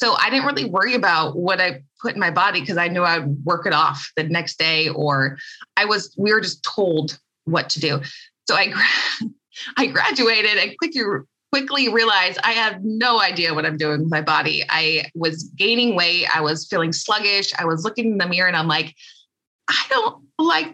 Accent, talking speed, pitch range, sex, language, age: American, 200 wpm, 160-205 Hz, female, English, 20-39